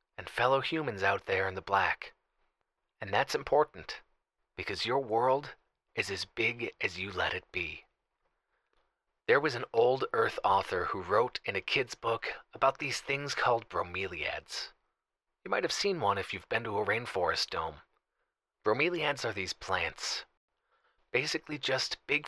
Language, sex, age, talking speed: English, male, 30-49, 155 wpm